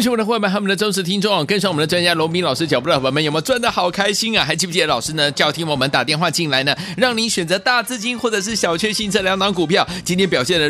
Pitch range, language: 155-220 Hz, Chinese